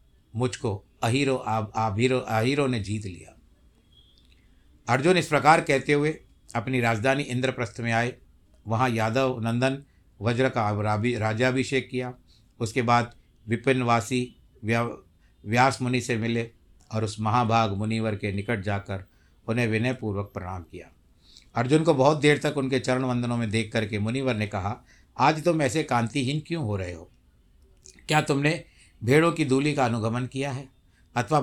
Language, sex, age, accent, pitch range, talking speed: Hindi, male, 60-79, native, 95-145 Hz, 145 wpm